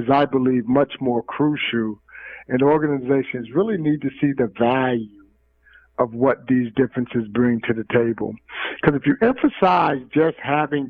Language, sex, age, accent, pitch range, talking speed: English, male, 50-69, American, 125-155 Hz, 150 wpm